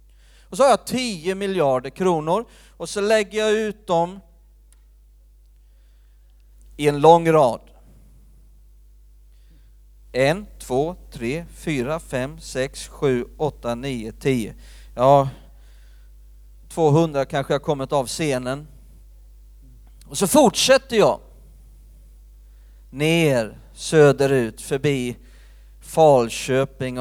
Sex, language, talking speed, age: male, Swedish, 95 wpm, 40-59